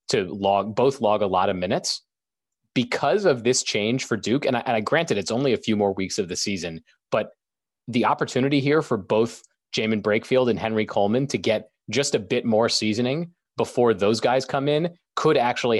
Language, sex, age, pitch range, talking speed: English, male, 30-49, 100-125 Hz, 200 wpm